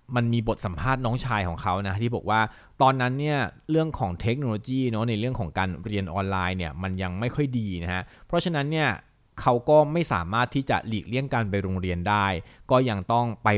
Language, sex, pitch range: Thai, male, 100-130 Hz